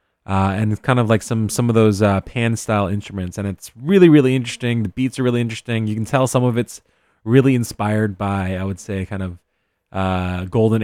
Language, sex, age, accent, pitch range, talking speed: English, male, 20-39, American, 100-130 Hz, 220 wpm